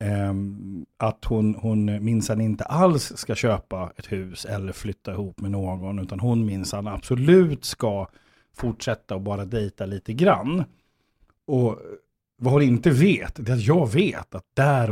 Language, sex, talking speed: Swedish, male, 160 wpm